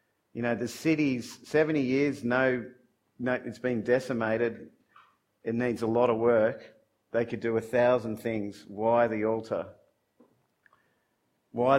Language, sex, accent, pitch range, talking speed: English, male, Australian, 110-125 Hz, 135 wpm